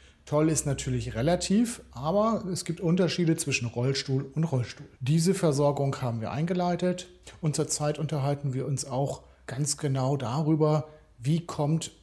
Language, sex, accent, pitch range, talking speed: German, male, German, 130-155 Hz, 140 wpm